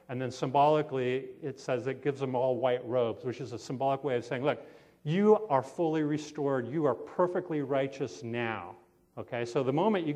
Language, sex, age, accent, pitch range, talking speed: English, male, 40-59, American, 130-160 Hz, 195 wpm